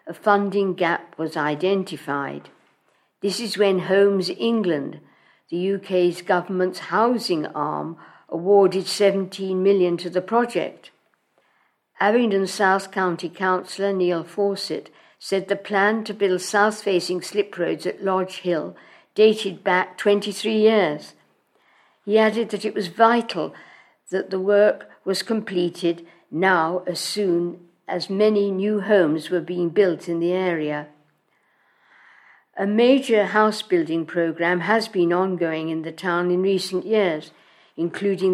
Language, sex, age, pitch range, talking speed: English, female, 60-79, 175-205 Hz, 125 wpm